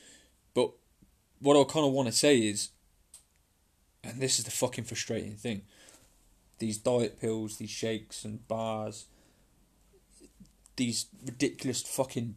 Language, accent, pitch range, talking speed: English, British, 105-130 Hz, 120 wpm